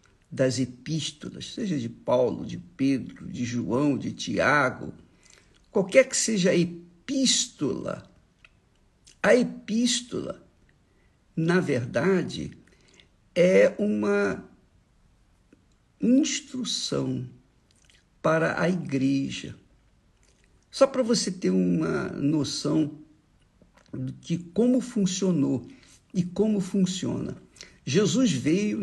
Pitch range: 145-215 Hz